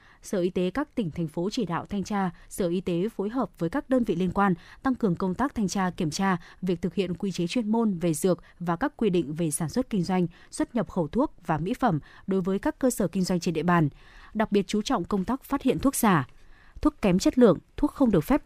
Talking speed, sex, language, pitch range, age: 270 wpm, female, Vietnamese, 175-235 Hz, 20-39